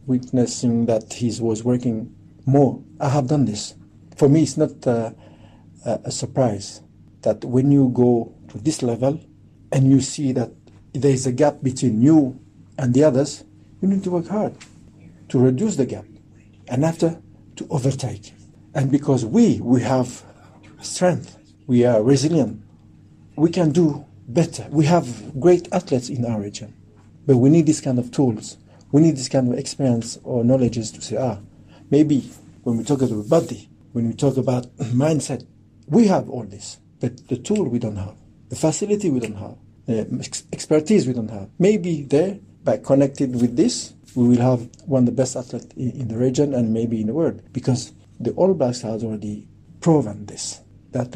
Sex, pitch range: male, 110-140 Hz